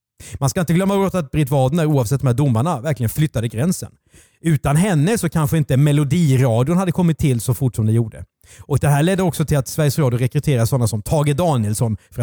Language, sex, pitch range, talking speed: Swedish, male, 125-170 Hz, 210 wpm